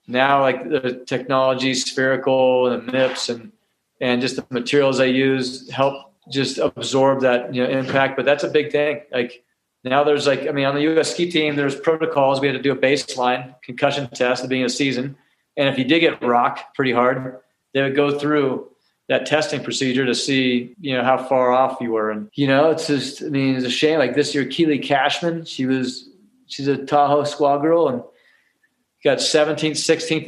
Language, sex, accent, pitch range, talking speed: English, male, American, 125-140 Hz, 200 wpm